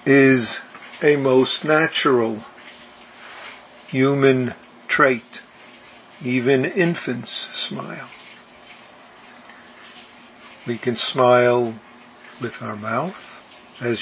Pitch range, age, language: 115-130 Hz, 50-69, English